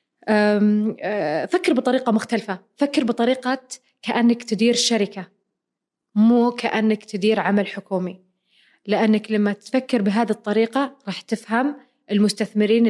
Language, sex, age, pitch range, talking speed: Arabic, female, 20-39, 195-240 Hz, 100 wpm